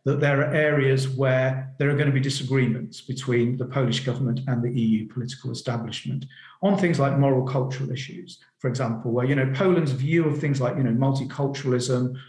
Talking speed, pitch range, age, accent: 190 wpm, 125-150 Hz, 50-69, British